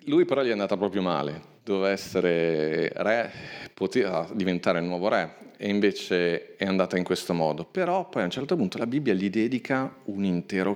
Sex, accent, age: male, native, 40-59